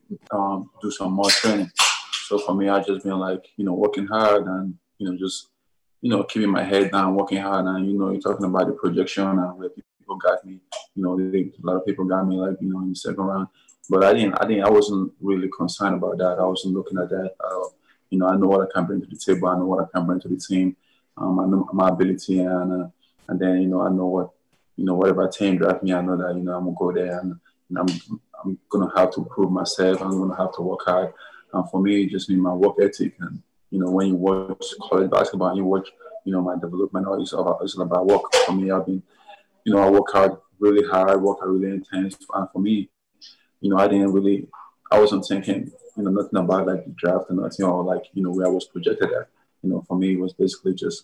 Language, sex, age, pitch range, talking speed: English, male, 20-39, 90-95 Hz, 255 wpm